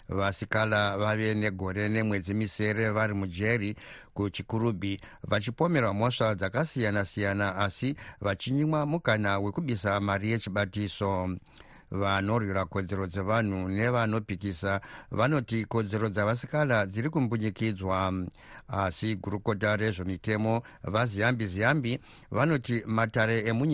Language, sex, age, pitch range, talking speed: English, male, 60-79, 100-125 Hz, 85 wpm